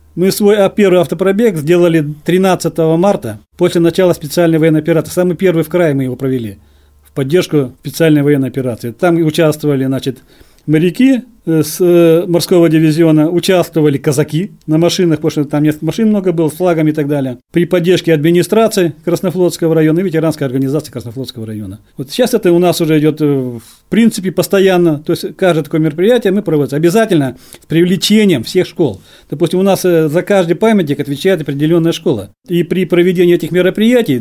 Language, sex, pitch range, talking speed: Russian, male, 150-185 Hz, 165 wpm